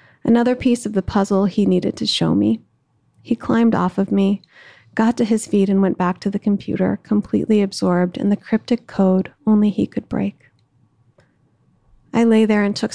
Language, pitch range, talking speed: English, 185-210 Hz, 185 wpm